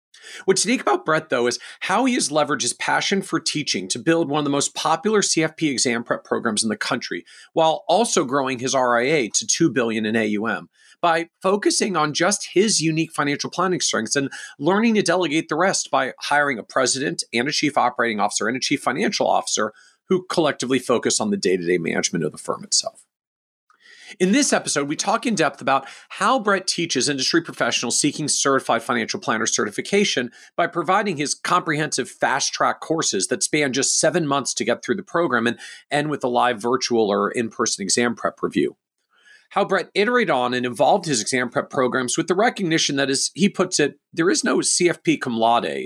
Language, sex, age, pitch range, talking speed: English, male, 40-59, 135-190 Hz, 190 wpm